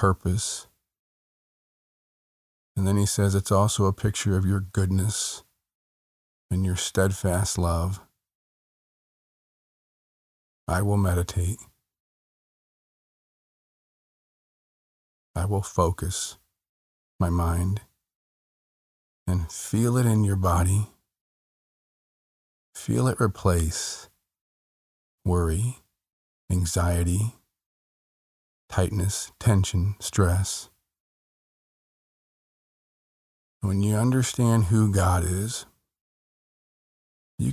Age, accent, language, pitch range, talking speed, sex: 40-59, American, English, 85-105 Hz, 70 wpm, male